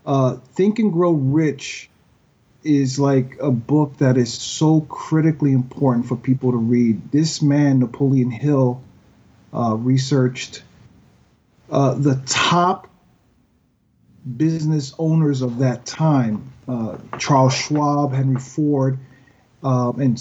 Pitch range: 130-155 Hz